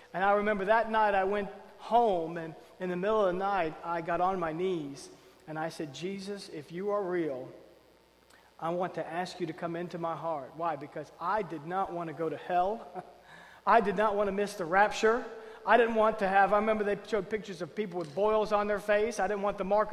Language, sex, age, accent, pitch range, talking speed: English, male, 40-59, American, 185-255 Hz, 235 wpm